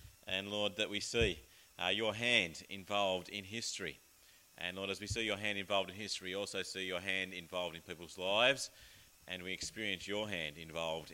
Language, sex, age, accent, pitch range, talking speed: English, male, 30-49, Australian, 95-130 Hz, 195 wpm